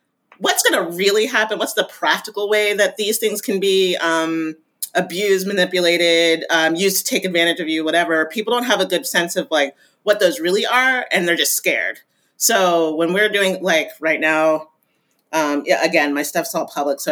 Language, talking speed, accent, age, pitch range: English, 195 wpm, American, 30-49, 165-215 Hz